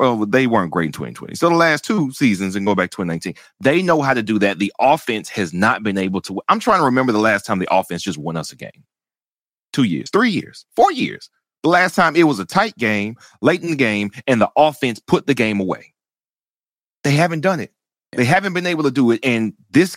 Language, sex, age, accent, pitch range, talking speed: English, male, 30-49, American, 100-155 Hz, 245 wpm